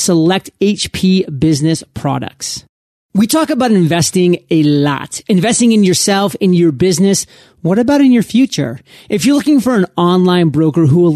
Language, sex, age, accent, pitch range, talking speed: English, male, 30-49, American, 160-205 Hz, 160 wpm